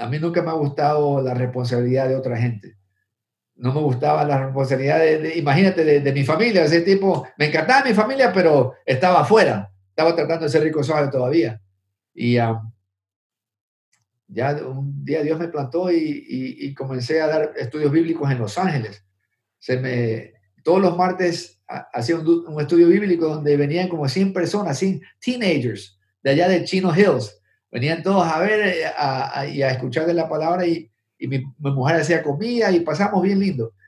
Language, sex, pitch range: Spanish, male, 120-170 Hz